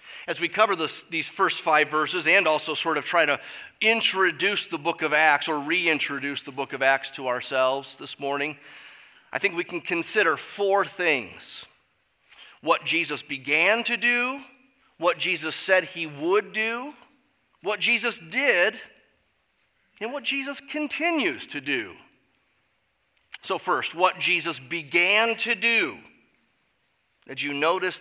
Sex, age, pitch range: male, 30-49, 150-225 Hz